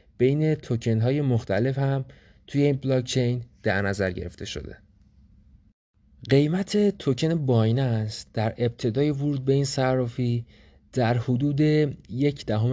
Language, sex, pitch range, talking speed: English, male, 110-135 Hz, 115 wpm